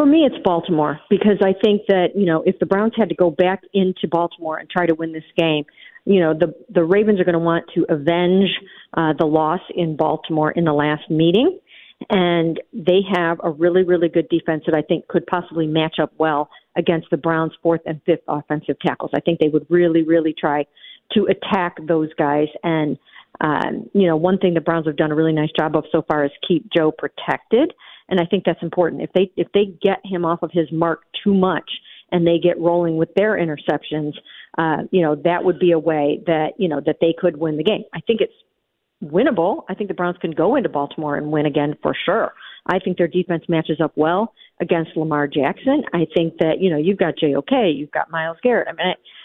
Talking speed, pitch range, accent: 225 wpm, 160-185 Hz, American